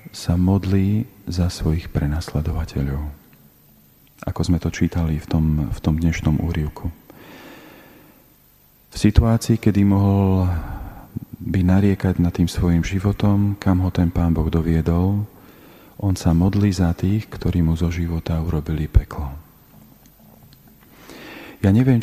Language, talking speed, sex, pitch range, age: Slovak, 120 wpm, male, 85-100 Hz, 40-59